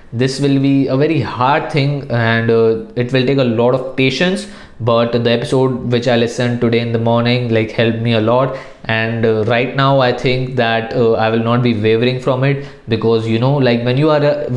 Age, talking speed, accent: 20-39, 225 wpm, native